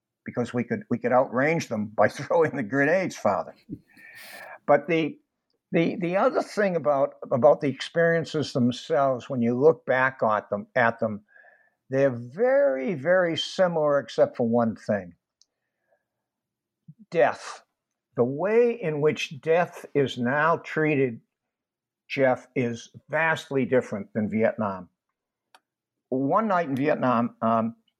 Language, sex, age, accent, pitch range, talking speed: English, male, 60-79, American, 120-155 Hz, 125 wpm